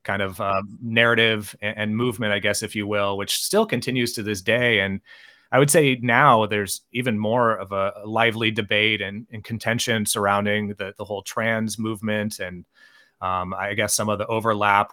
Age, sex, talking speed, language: 30-49, male, 185 wpm, English